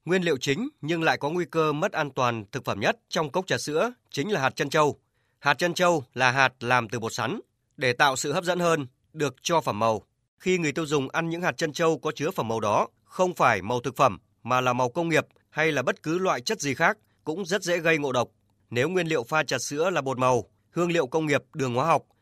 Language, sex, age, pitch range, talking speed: Vietnamese, male, 20-39, 120-160 Hz, 260 wpm